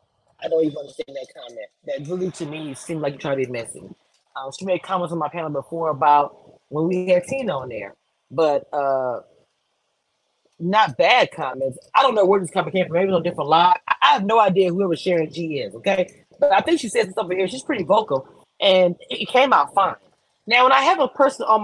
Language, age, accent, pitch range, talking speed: English, 20-39, American, 155-220 Hz, 235 wpm